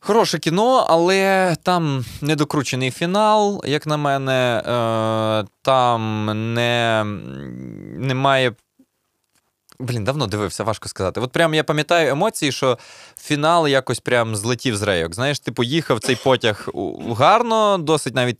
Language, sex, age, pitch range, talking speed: Ukrainian, male, 20-39, 115-150 Hz, 120 wpm